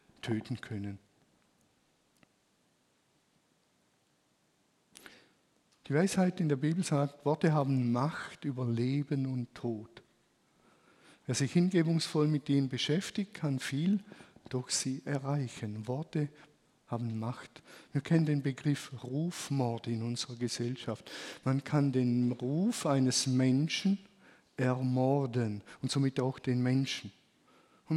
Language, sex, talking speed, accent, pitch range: German, male, 105 wpm, German, 125-150 Hz